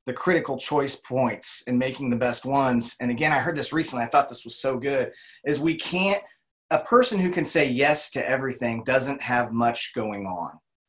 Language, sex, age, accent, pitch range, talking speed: English, male, 30-49, American, 120-160 Hz, 200 wpm